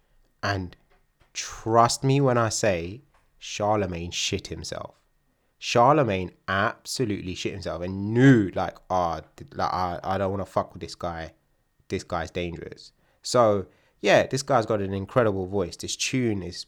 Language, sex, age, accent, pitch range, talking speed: English, male, 20-39, British, 90-120 Hz, 155 wpm